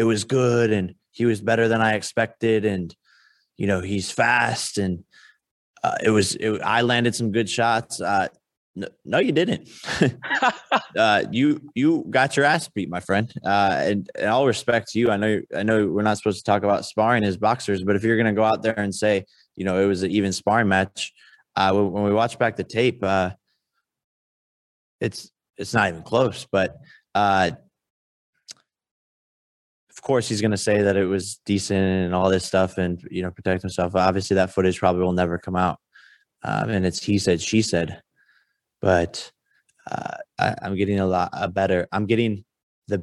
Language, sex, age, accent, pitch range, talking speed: English, male, 20-39, American, 90-110 Hz, 190 wpm